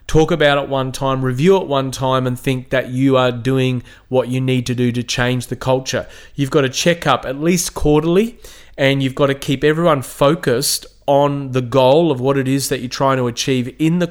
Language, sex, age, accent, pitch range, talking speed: English, male, 30-49, Australian, 125-150 Hz, 225 wpm